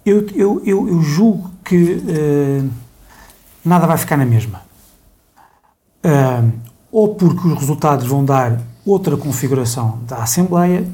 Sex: male